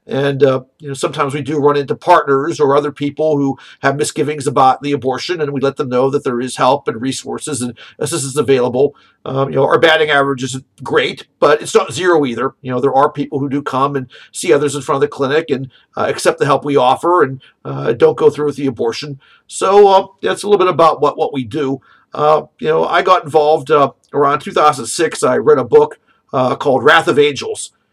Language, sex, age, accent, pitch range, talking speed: English, male, 50-69, American, 135-190 Hz, 230 wpm